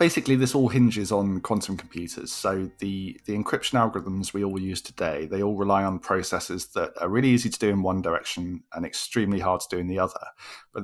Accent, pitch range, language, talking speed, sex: British, 95-115 Hz, English, 215 wpm, male